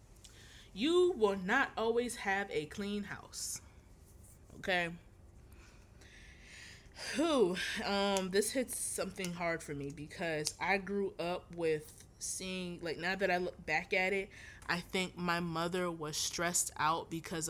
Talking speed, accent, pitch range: 135 wpm, American, 160-200 Hz